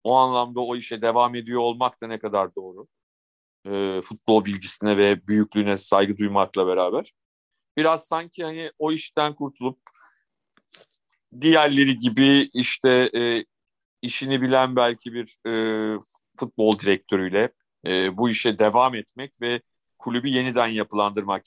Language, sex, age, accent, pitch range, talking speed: Turkish, male, 50-69, native, 115-140 Hz, 125 wpm